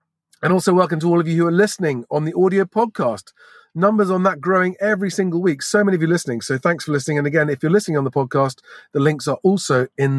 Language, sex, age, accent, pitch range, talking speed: English, male, 40-59, British, 150-210 Hz, 255 wpm